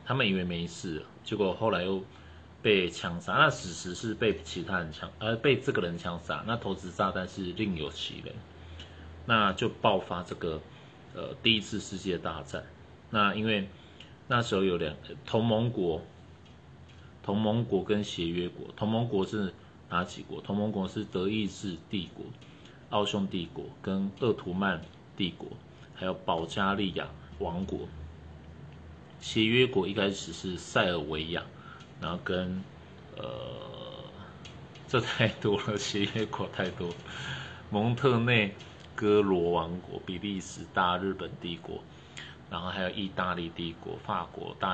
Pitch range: 85-105 Hz